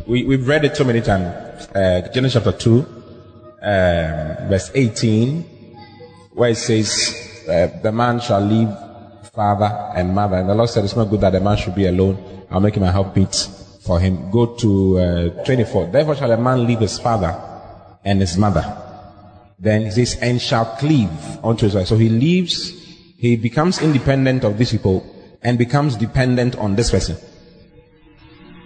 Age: 30-49